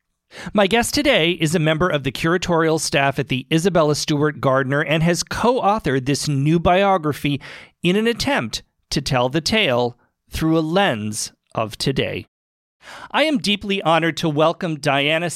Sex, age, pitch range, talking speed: male, 40-59, 140-180 Hz, 155 wpm